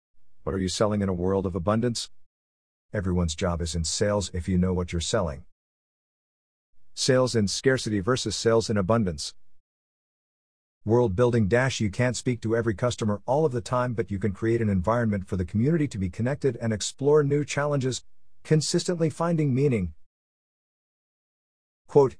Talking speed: 160 wpm